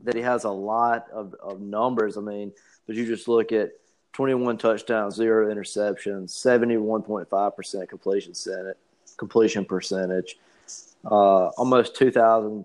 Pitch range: 100-115 Hz